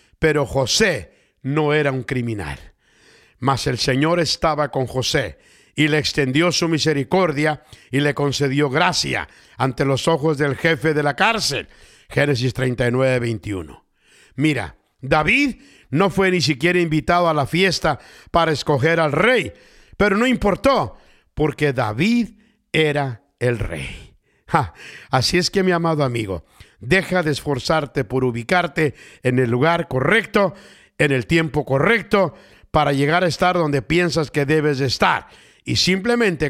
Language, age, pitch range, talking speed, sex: English, 50-69, 130-175 Hz, 140 wpm, male